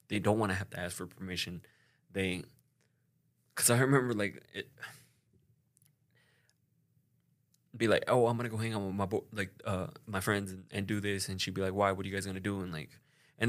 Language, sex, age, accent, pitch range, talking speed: English, male, 20-39, American, 95-120 Hz, 220 wpm